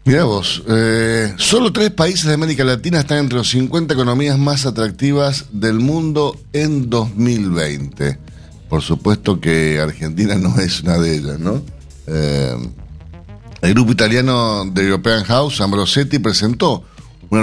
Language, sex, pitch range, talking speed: Spanish, male, 85-115 Hz, 140 wpm